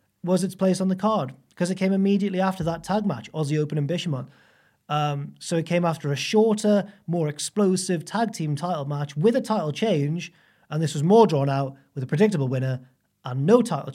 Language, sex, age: English, male, 30-49